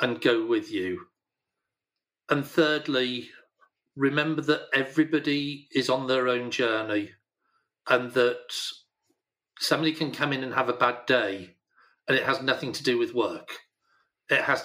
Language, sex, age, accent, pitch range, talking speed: English, male, 40-59, British, 120-150 Hz, 145 wpm